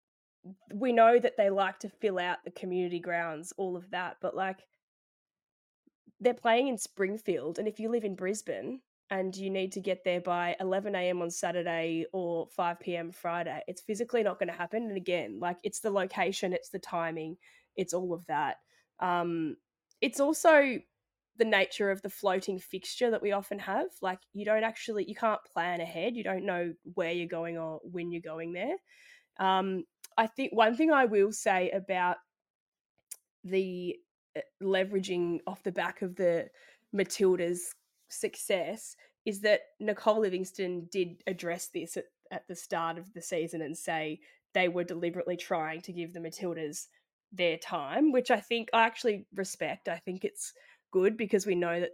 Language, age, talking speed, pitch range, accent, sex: English, 20-39, 170 wpm, 175-215 Hz, Australian, female